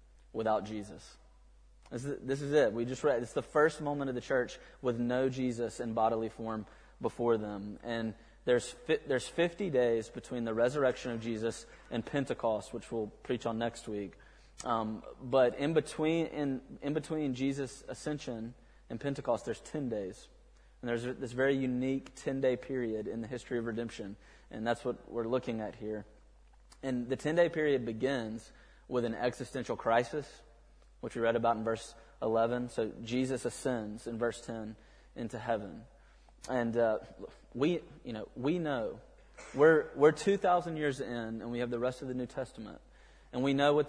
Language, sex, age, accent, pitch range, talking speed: English, male, 20-39, American, 115-130 Hz, 175 wpm